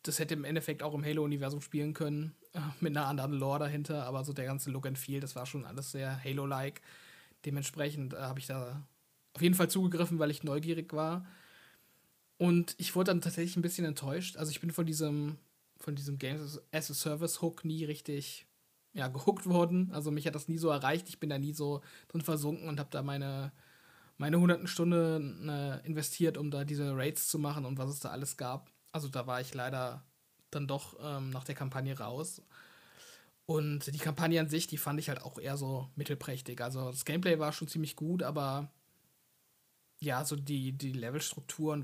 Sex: male